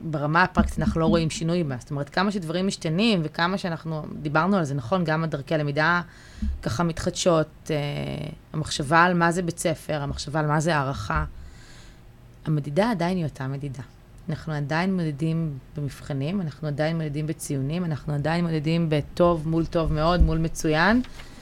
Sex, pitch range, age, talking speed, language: female, 145-170 Hz, 20-39, 160 wpm, Hebrew